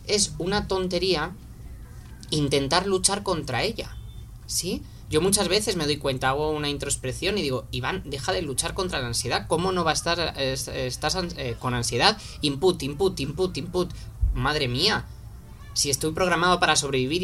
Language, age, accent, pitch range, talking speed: Spanish, 20-39, Spanish, 130-190 Hz, 165 wpm